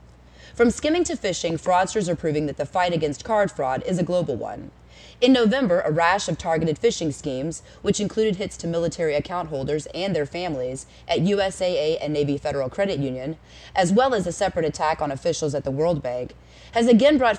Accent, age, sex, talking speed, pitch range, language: American, 20-39, female, 195 wpm, 140-195 Hz, English